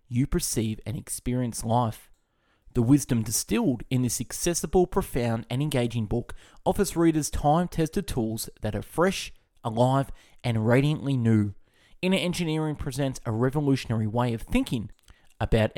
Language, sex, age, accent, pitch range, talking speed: English, male, 20-39, Australian, 115-155 Hz, 135 wpm